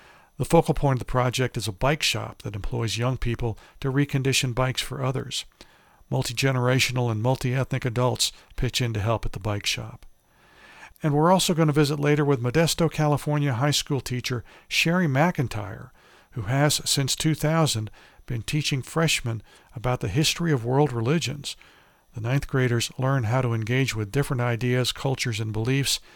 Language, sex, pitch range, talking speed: English, male, 115-145 Hz, 165 wpm